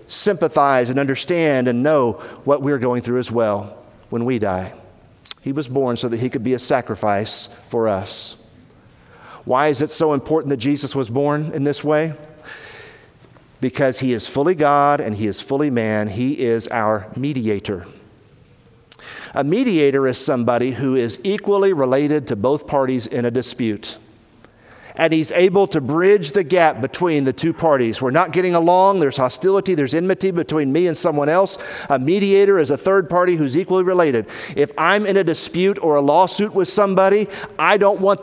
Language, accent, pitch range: English, American, 125-180 Hz